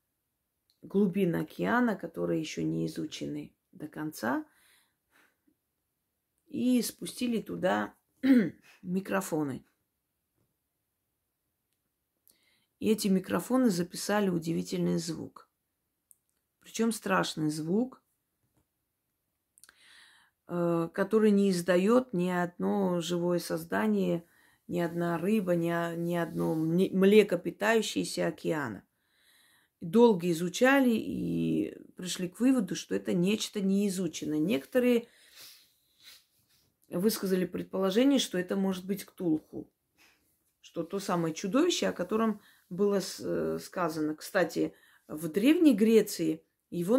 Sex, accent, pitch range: female, native, 170-220 Hz